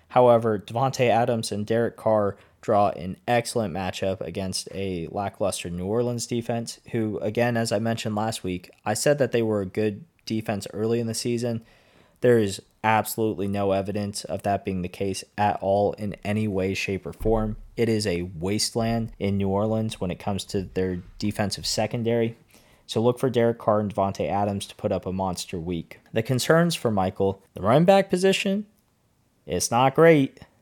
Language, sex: English, male